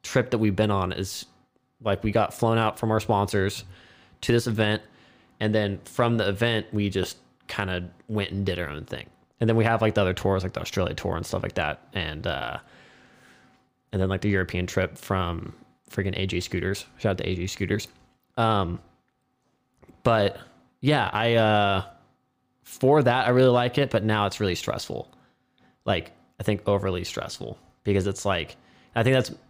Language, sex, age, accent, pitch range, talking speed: English, male, 20-39, American, 95-115 Hz, 185 wpm